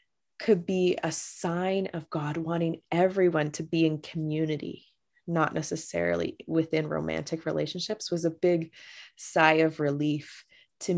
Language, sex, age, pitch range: English, female, 20-39, 155-185 Hz